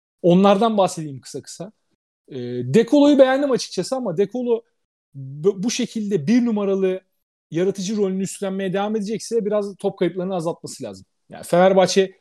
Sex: male